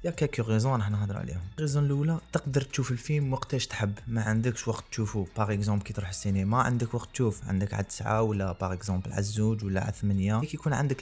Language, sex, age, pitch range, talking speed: Arabic, male, 20-39, 100-120 Hz, 205 wpm